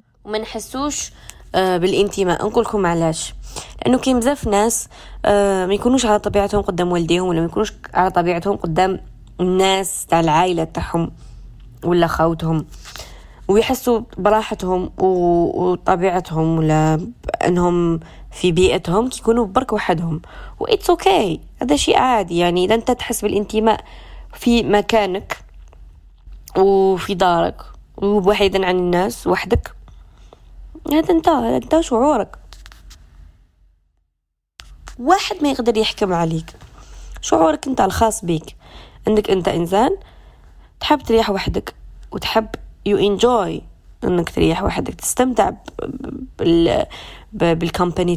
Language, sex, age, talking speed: Arabic, female, 20-39, 100 wpm